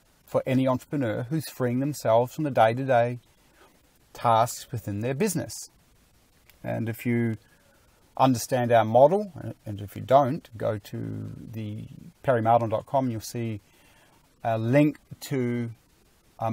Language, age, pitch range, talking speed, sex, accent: English, 30-49, 115-140 Hz, 120 wpm, male, Australian